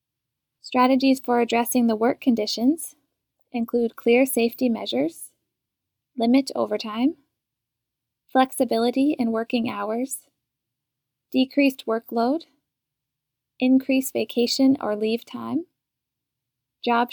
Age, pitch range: 10-29, 220-265 Hz